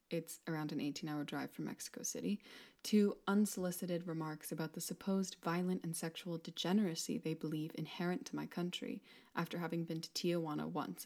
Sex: female